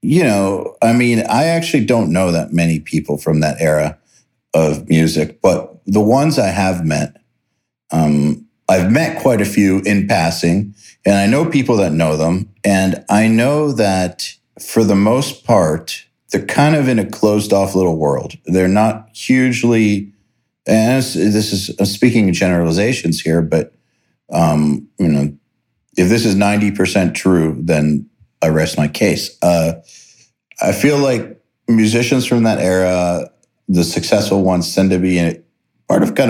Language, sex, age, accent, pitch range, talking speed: English, male, 50-69, American, 85-110 Hz, 160 wpm